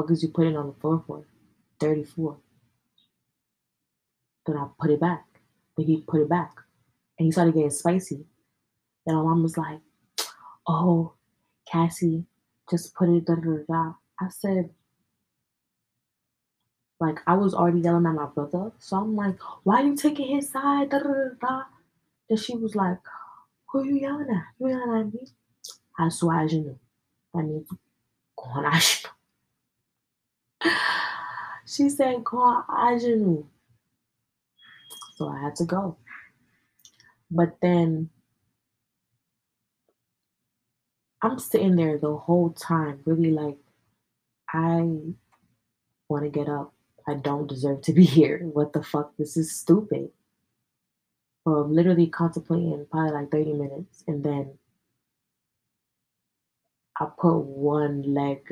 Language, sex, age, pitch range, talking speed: English, female, 20-39, 150-180 Hz, 125 wpm